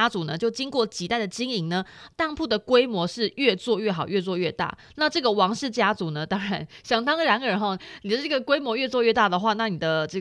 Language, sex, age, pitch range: Chinese, female, 20-39, 180-245 Hz